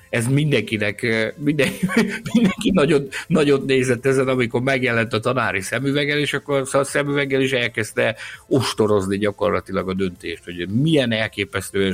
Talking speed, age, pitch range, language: 130 wpm, 60-79, 95-125 Hz, Hungarian